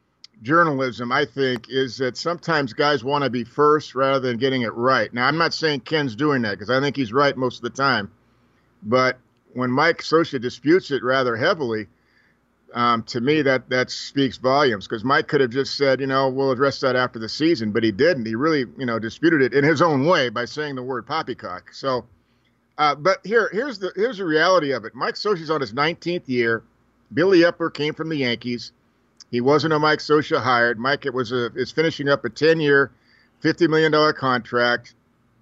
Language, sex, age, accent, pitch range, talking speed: English, male, 50-69, American, 120-145 Hz, 205 wpm